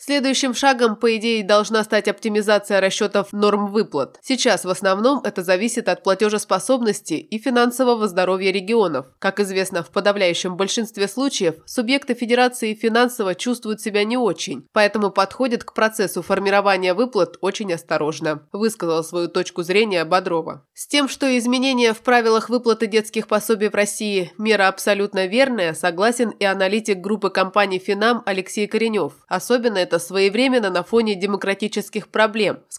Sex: female